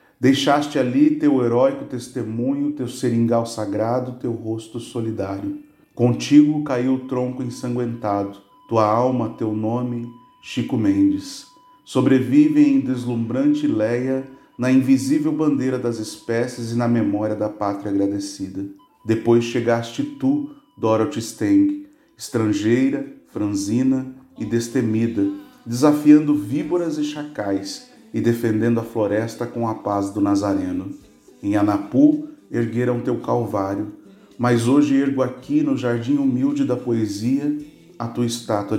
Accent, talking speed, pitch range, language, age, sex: Brazilian, 120 wpm, 115-150 Hz, Portuguese, 40-59, male